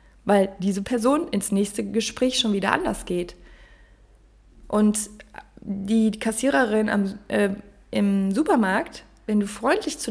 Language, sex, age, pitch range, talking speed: German, female, 20-39, 195-240 Hz, 120 wpm